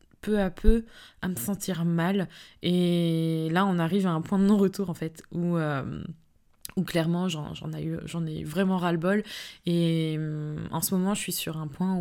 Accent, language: French, French